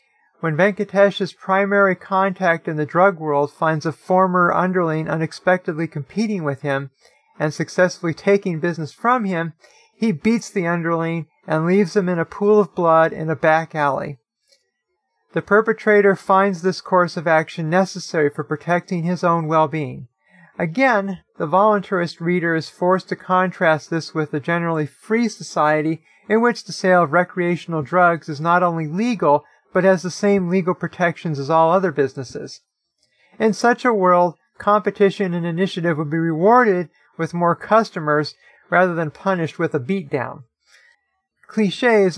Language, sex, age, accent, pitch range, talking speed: English, male, 40-59, American, 155-195 Hz, 150 wpm